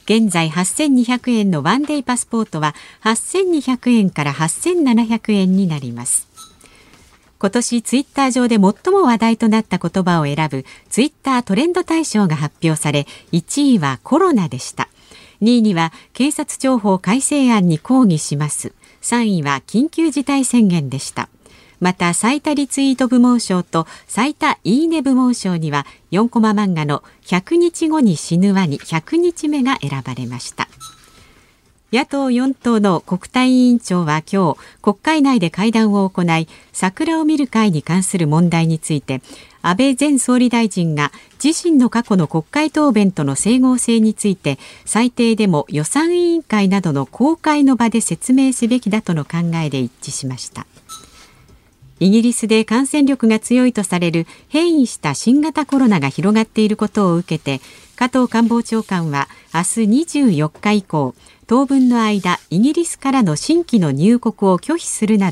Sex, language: female, Japanese